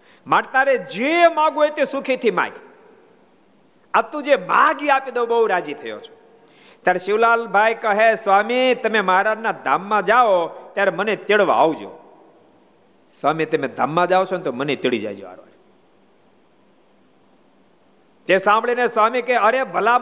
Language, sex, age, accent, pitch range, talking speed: Gujarati, male, 50-69, native, 205-275 Hz, 70 wpm